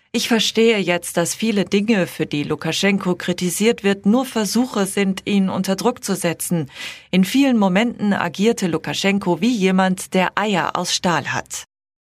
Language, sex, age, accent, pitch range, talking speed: German, female, 40-59, German, 175-230 Hz, 150 wpm